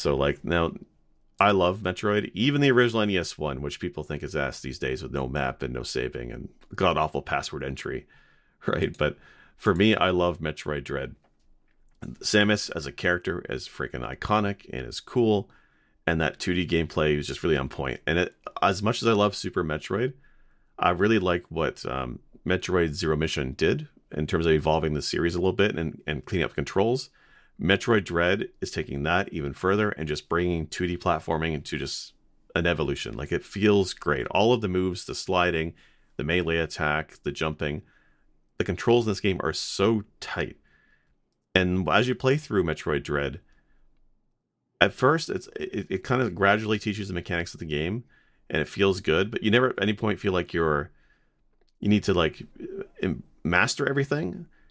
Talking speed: 180 wpm